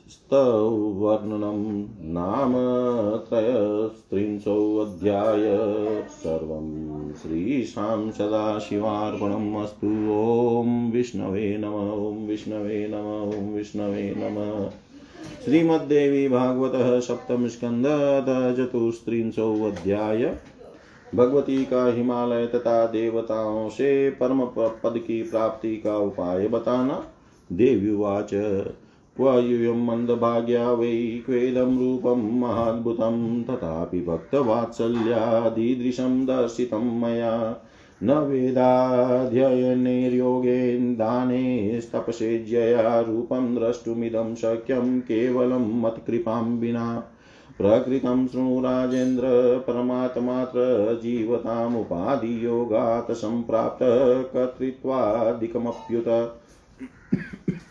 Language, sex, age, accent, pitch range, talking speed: Hindi, male, 30-49, native, 110-125 Hz, 55 wpm